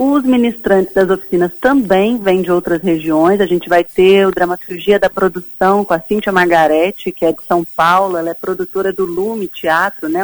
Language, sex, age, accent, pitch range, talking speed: Portuguese, female, 30-49, Brazilian, 175-205 Hz, 195 wpm